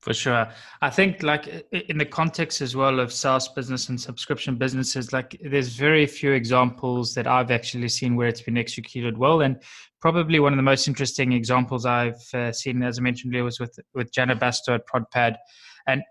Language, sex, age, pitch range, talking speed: English, male, 20-39, 120-140 Hz, 195 wpm